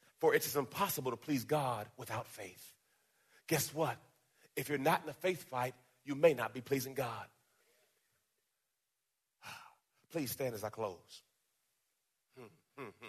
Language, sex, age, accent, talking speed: English, male, 40-59, American, 140 wpm